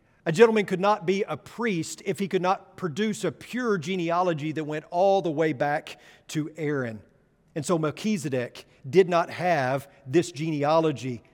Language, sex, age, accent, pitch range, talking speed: English, male, 40-59, American, 155-200 Hz, 165 wpm